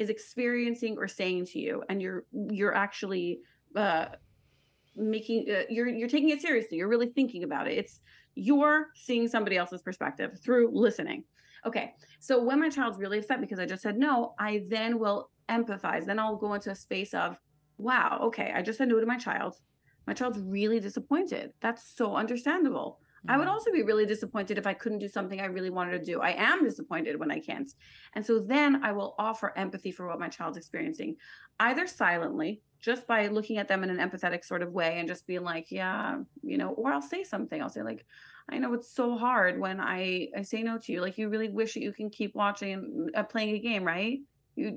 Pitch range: 195-245 Hz